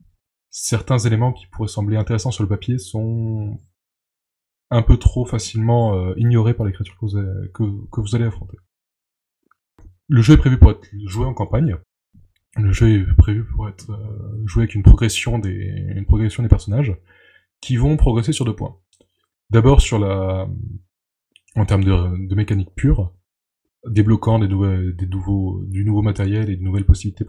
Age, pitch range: 20-39, 95-120 Hz